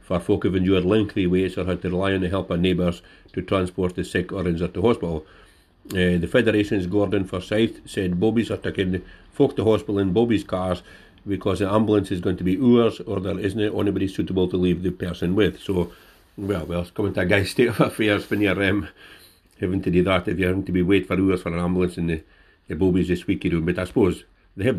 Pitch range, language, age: 90-100 Hz, English, 60-79